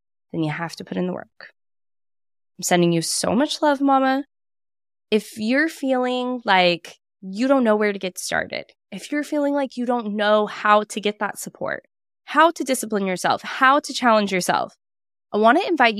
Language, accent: English, American